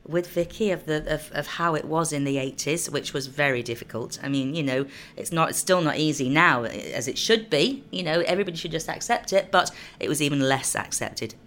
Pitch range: 145-185 Hz